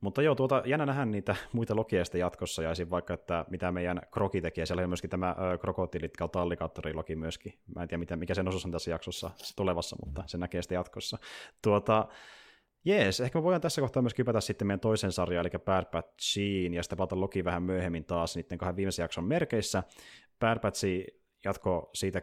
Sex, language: male, Finnish